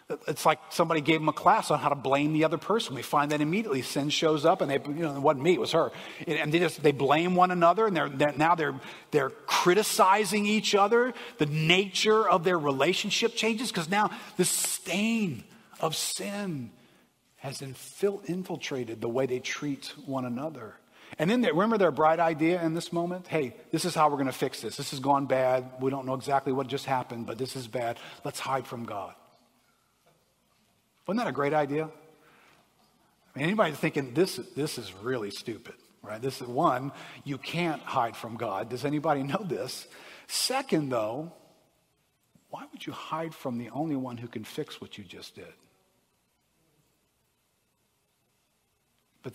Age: 40-59